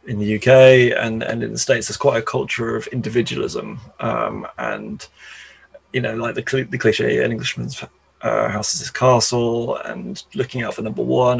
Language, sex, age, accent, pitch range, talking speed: English, male, 20-39, British, 110-130 Hz, 185 wpm